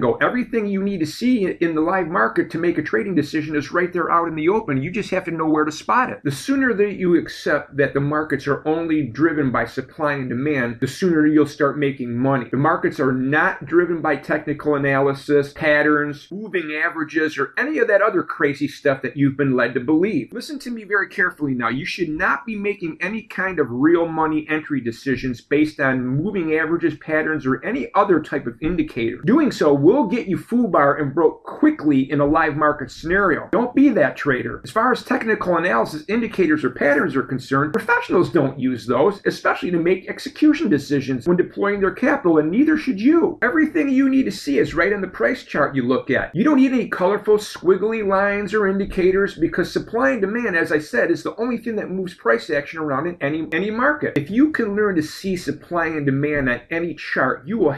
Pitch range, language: 145-205 Hz, English